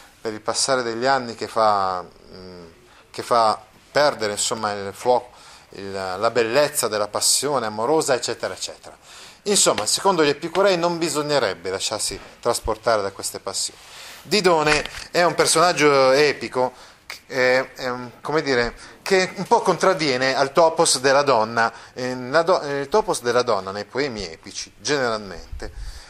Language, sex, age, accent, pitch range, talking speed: Italian, male, 30-49, native, 120-170 Hz, 135 wpm